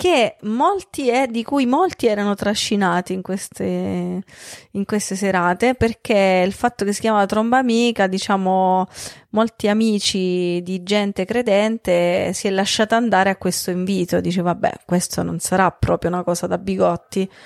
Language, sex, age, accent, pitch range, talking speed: Italian, female, 30-49, native, 185-225 Hz, 150 wpm